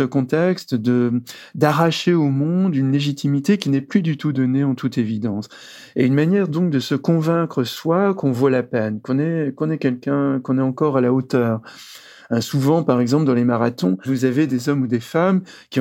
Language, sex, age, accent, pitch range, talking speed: French, male, 40-59, French, 120-155 Hz, 205 wpm